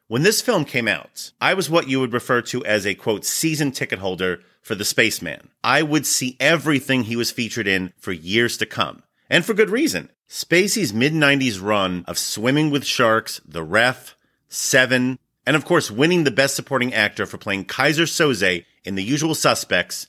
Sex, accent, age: male, American, 40-59